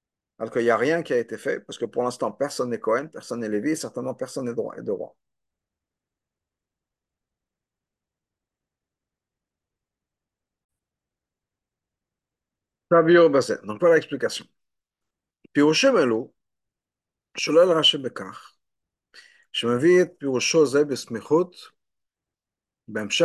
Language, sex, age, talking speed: French, male, 50-69, 90 wpm